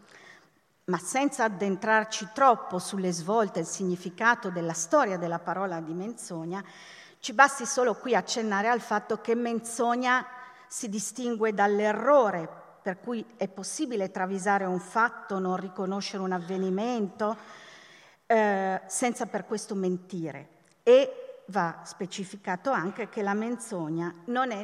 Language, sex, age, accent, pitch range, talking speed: Italian, female, 40-59, native, 185-250 Hz, 125 wpm